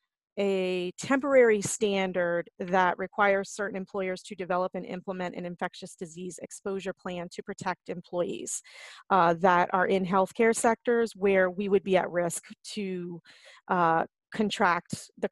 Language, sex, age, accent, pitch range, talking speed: English, female, 30-49, American, 180-210 Hz, 135 wpm